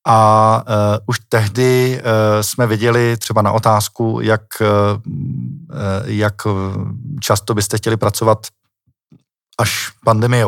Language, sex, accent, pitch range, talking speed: Czech, male, native, 100-115 Hz, 90 wpm